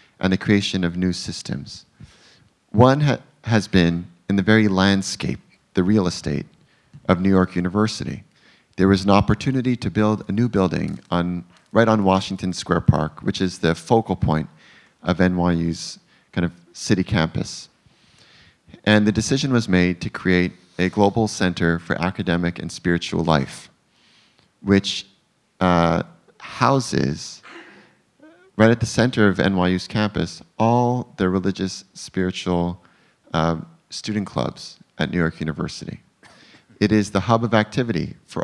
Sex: male